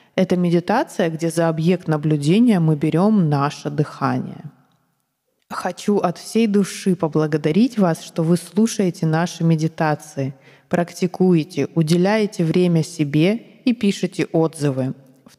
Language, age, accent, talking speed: Russian, 20-39, native, 115 wpm